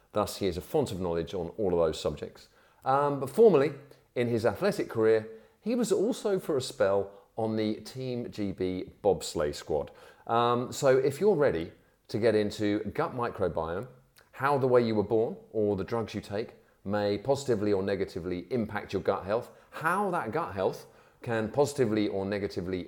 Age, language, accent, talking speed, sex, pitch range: 40-59, English, British, 180 wpm, male, 100-135 Hz